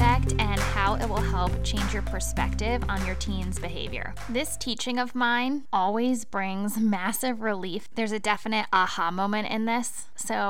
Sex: female